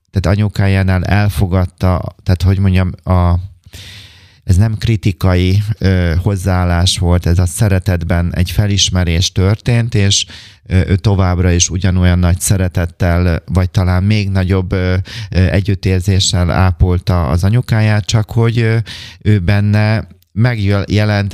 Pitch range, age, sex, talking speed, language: 90-105 Hz, 30-49, male, 105 wpm, Hungarian